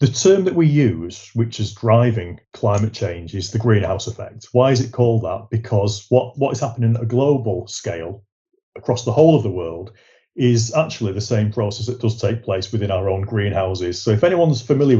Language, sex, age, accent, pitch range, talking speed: English, male, 30-49, British, 105-130 Hz, 205 wpm